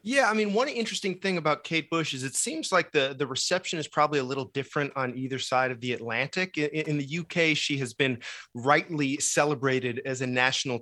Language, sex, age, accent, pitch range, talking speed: English, male, 30-49, American, 135-160 Hz, 215 wpm